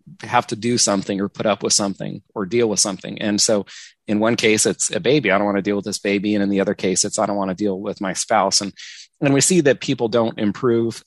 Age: 30-49